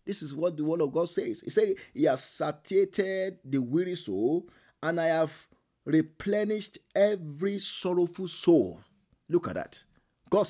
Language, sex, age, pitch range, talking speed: English, male, 50-69, 160-210 Hz, 155 wpm